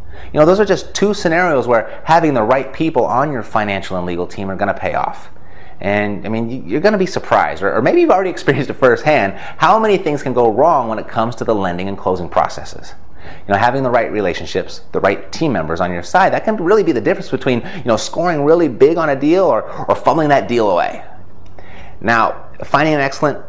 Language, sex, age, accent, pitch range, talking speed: English, male, 30-49, American, 90-135 Hz, 235 wpm